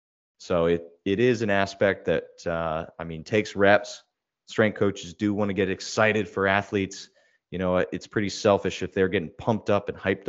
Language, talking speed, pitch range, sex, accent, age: English, 190 wpm, 85-100 Hz, male, American, 30-49